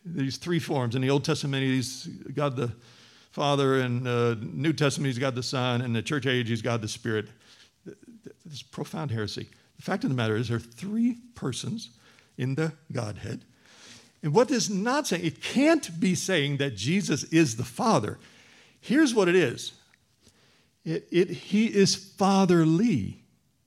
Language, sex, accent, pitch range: English, male, American, 125-195 Hz